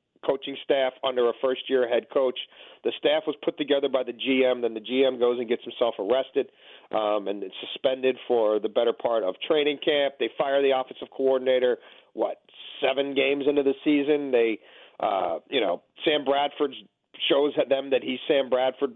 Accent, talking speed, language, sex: American, 185 wpm, English, male